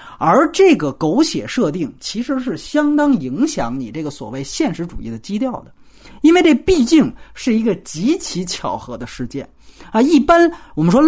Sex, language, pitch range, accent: male, Chinese, 185-295 Hz, native